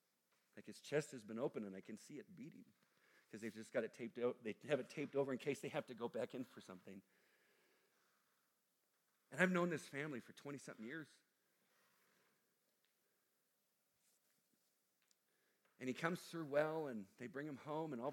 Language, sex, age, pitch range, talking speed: English, male, 50-69, 125-200 Hz, 180 wpm